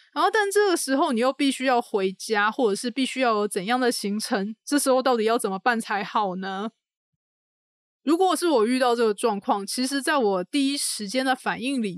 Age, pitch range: 20-39, 205-255 Hz